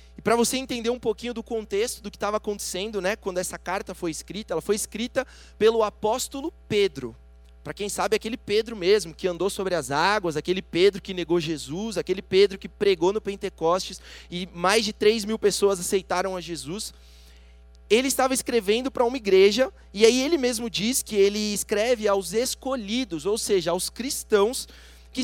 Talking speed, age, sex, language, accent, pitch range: 180 wpm, 20-39, male, Portuguese, Brazilian, 180-230 Hz